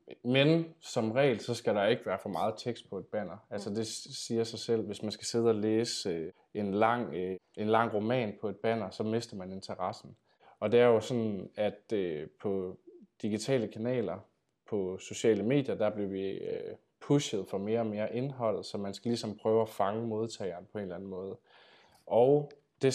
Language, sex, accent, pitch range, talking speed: Danish, male, native, 105-125 Hz, 190 wpm